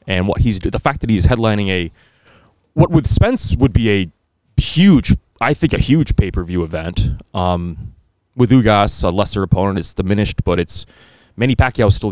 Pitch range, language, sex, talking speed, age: 95-120 Hz, English, male, 180 wpm, 30-49